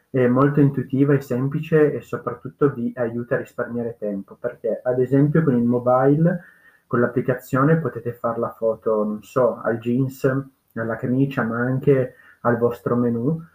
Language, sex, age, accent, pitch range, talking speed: Italian, male, 30-49, native, 120-140 Hz, 155 wpm